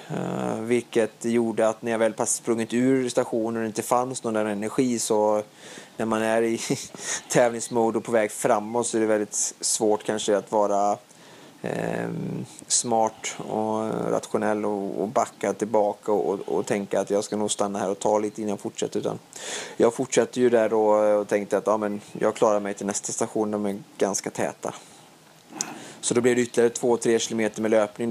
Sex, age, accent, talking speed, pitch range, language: male, 20-39, Norwegian, 175 wpm, 105-115 Hz, Swedish